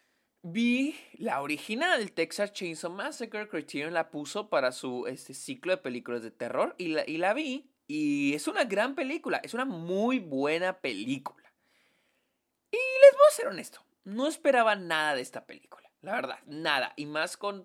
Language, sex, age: Spanish, male, 20-39